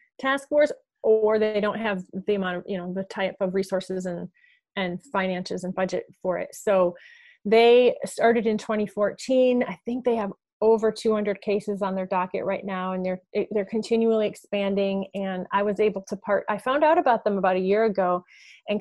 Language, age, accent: English, 30-49, American